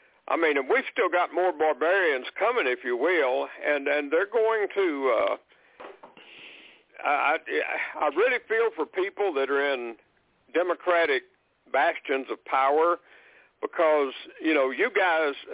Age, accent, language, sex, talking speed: 60-79, American, English, male, 125 wpm